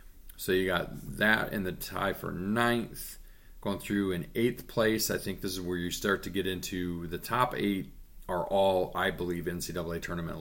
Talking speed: 190 wpm